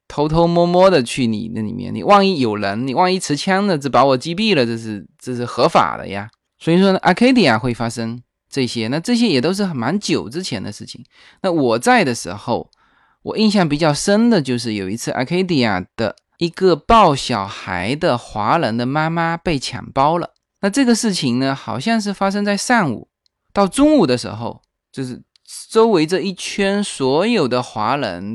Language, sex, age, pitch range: Chinese, male, 20-39, 125-185 Hz